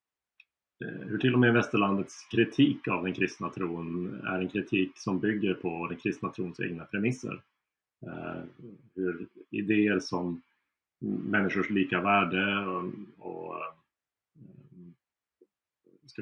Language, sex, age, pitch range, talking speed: Swedish, male, 30-49, 90-105 Hz, 110 wpm